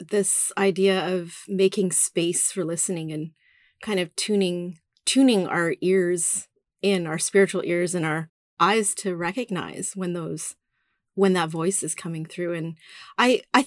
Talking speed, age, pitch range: 150 wpm, 30-49, 175-215 Hz